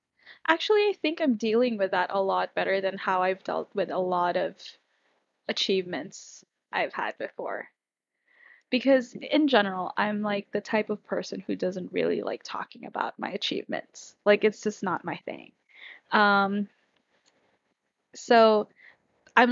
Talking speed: 150 wpm